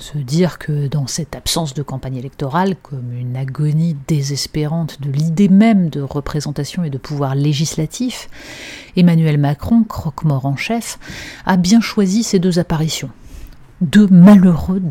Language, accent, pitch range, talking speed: French, French, 150-195 Hz, 140 wpm